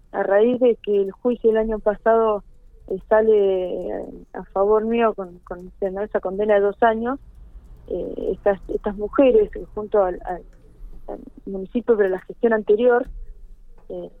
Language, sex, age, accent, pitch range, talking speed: Spanish, female, 20-39, Argentinian, 200-235 Hz, 150 wpm